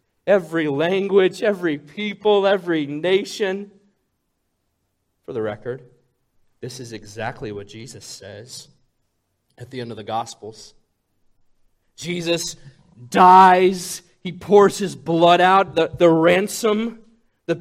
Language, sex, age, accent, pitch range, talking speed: English, male, 40-59, American, 115-180 Hz, 110 wpm